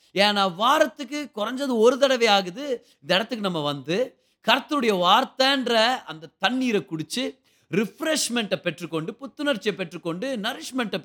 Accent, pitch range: native, 195-270 Hz